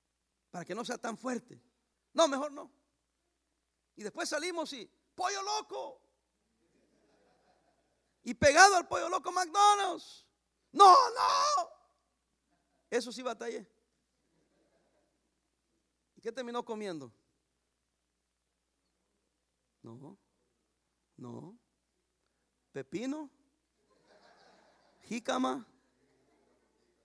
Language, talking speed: English, 75 wpm